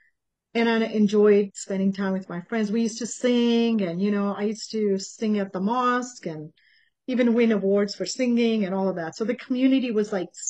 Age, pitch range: 40-59, 190-230 Hz